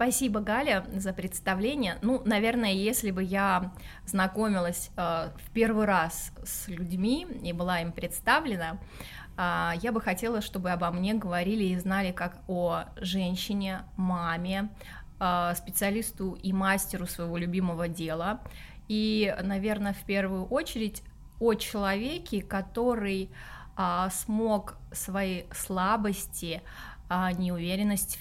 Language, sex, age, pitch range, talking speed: Russian, female, 20-39, 180-215 Hz, 115 wpm